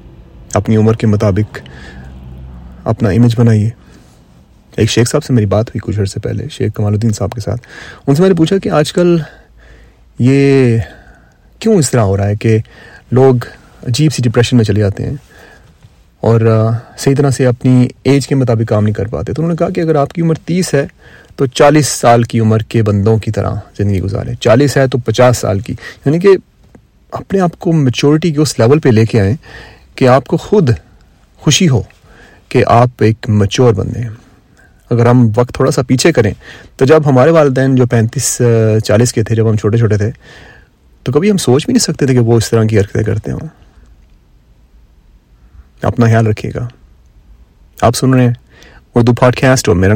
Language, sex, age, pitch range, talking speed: Urdu, male, 30-49, 105-135 Hz, 195 wpm